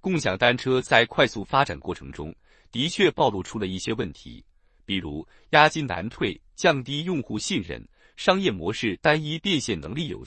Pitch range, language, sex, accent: 90-150 Hz, Chinese, male, native